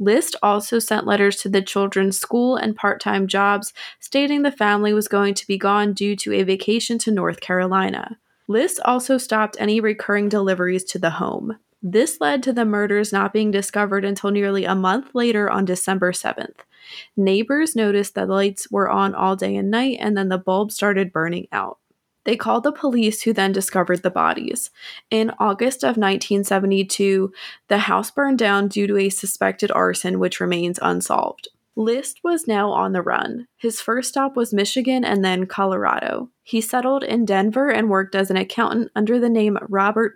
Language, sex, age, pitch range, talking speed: English, female, 20-39, 195-230 Hz, 180 wpm